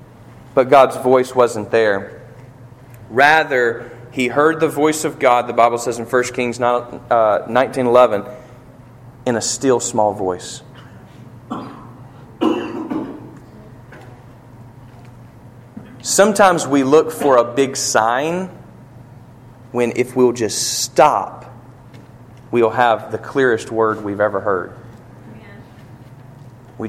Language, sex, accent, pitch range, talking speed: English, male, American, 115-130 Hz, 105 wpm